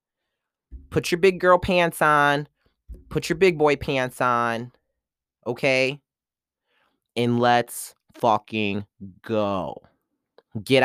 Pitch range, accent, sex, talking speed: 130-170 Hz, American, male, 100 wpm